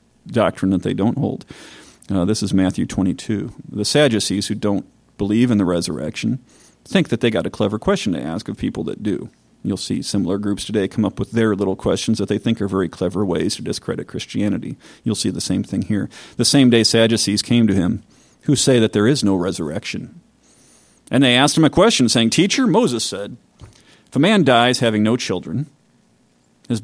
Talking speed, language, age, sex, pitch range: 200 wpm, English, 40-59, male, 100-130 Hz